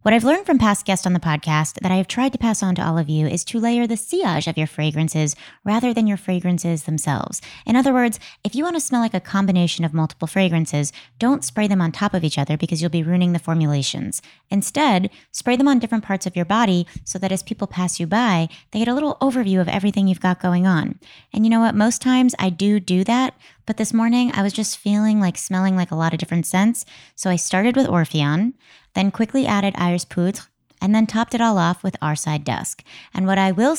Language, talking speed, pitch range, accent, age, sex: English, 240 wpm, 170-225 Hz, American, 20-39, female